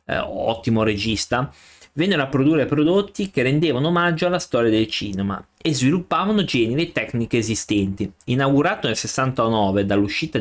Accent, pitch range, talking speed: native, 105-145 Hz, 135 wpm